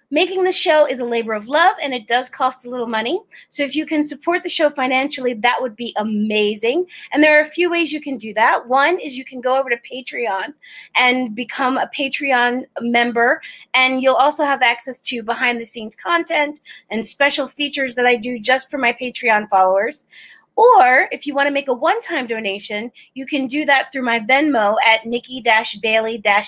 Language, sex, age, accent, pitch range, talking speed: English, female, 30-49, American, 225-290 Hz, 200 wpm